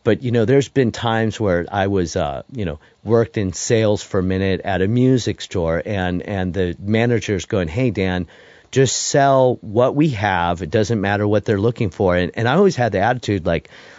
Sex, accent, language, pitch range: male, American, English, 95-130 Hz